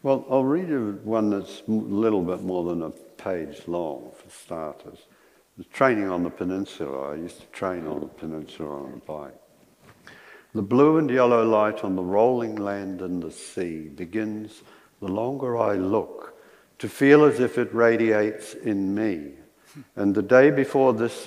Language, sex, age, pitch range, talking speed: English, male, 60-79, 90-110 Hz, 170 wpm